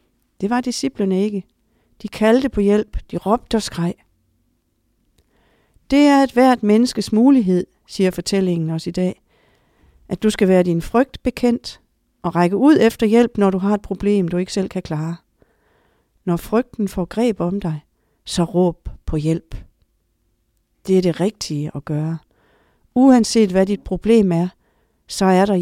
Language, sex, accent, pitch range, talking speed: English, female, Danish, 170-215 Hz, 160 wpm